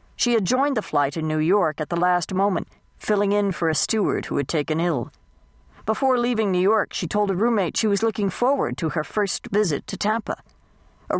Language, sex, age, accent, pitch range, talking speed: English, female, 60-79, American, 145-200 Hz, 215 wpm